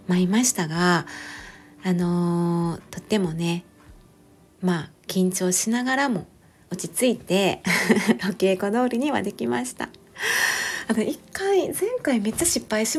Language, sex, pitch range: Japanese, female, 175-230 Hz